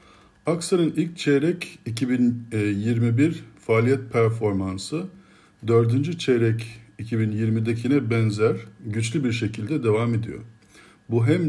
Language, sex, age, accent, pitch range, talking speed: Turkish, male, 50-69, native, 105-130 Hz, 90 wpm